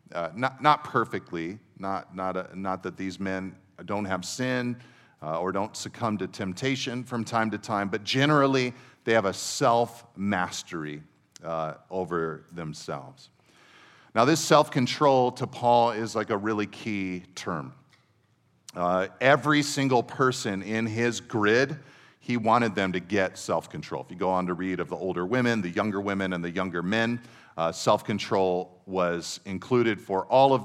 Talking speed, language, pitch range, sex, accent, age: 155 wpm, English, 95-125 Hz, male, American, 40-59